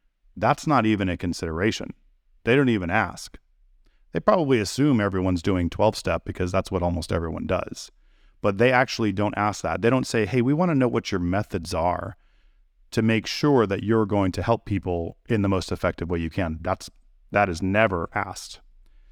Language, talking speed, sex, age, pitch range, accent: English, 190 wpm, male, 40-59, 90-115 Hz, American